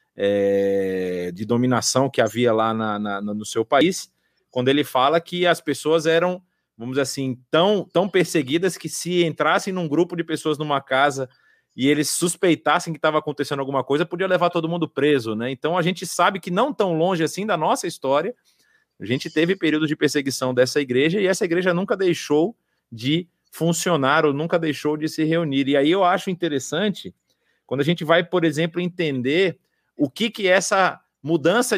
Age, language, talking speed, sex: 30-49, Portuguese, 180 wpm, male